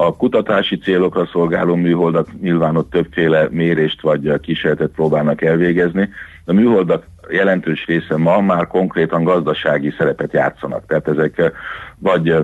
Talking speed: 125 wpm